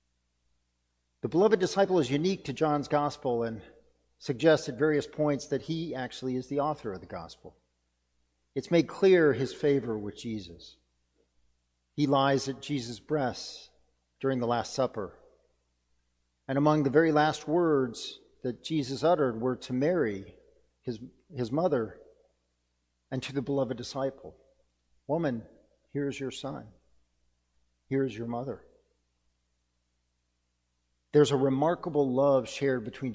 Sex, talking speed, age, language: male, 130 wpm, 50-69, English